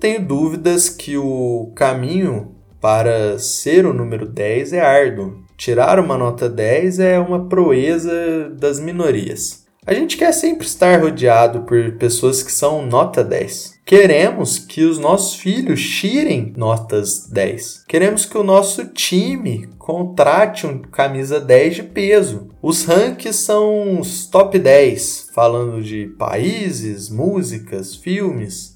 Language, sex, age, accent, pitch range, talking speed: Portuguese, male, 20-39, Brazilian, 120-190 Hz, 130 wpm